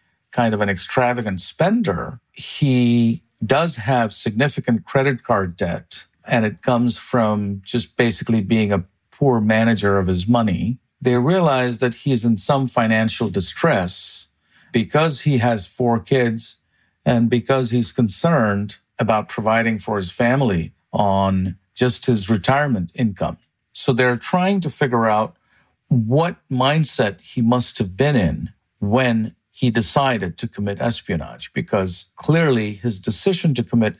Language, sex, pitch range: English, male, 105-130 Hz